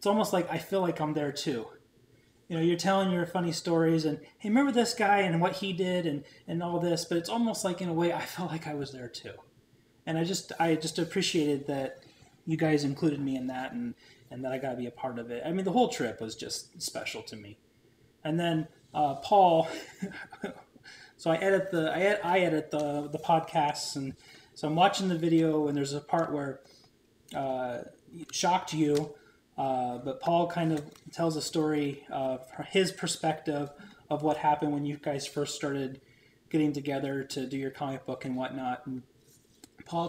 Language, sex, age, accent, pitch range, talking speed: English, male, 30-49, American, 135-170 Hz, 205 wpm